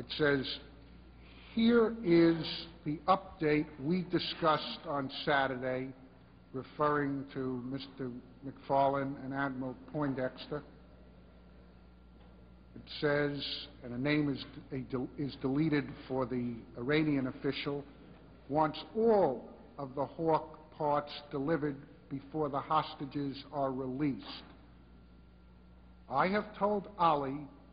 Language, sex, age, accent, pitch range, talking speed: English, male, 50-69, American, 125-165 Hz, 100 wpm